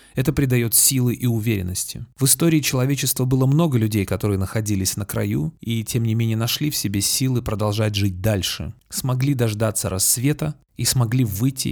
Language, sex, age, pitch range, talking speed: Russian, male, 30-49, 105-135 Hz, 165 wpm